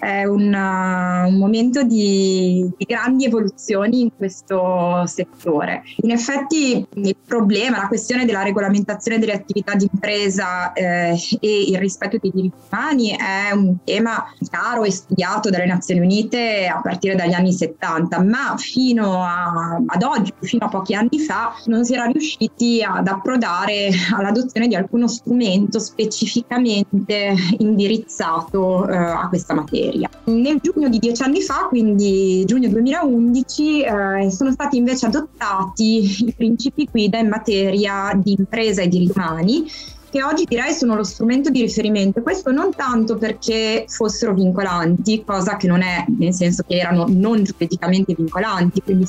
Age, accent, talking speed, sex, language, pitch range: 20-39, native, 145 wpm, female, Italian, 185-230 Hz